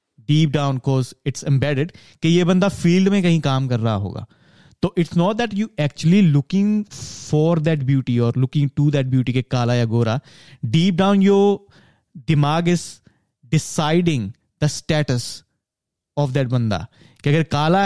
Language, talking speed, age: Punjabi, 160 wpm, 30-49